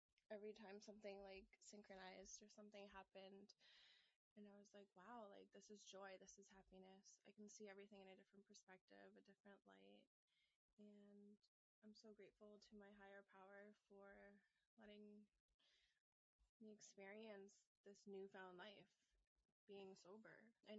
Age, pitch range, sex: 20-39, 190-210 Hz, female